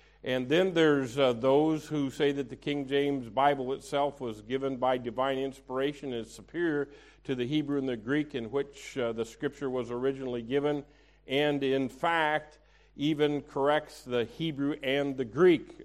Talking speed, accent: 170 wpm, American